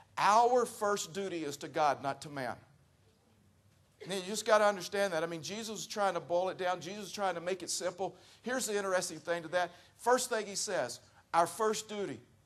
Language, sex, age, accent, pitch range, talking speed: English, male, 50-69, American, 105-165 Hz, 215 wpm